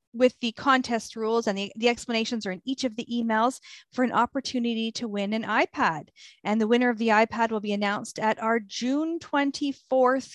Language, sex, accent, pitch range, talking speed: English, female, American, 215-270 Hz, 195 wpm